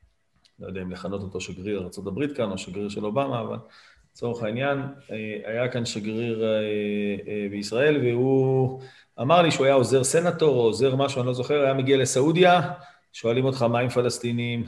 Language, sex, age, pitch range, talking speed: Hebrew, male, 40-59, 115-140 Hz, 165 wpm